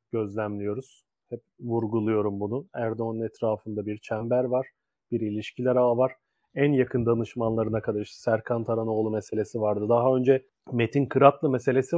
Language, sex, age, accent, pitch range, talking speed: Turkish, male, 30-49, native, 110-135 Hz, 135 wpm